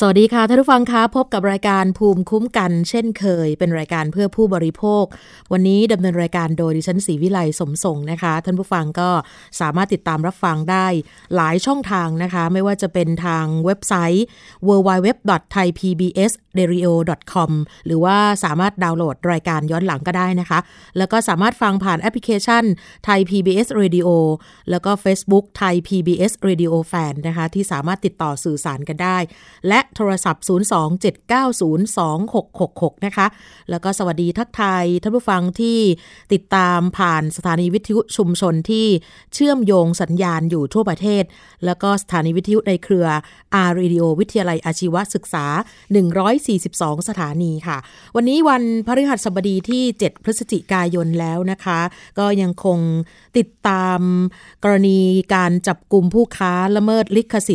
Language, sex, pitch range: Thai, female, 170-205 Hz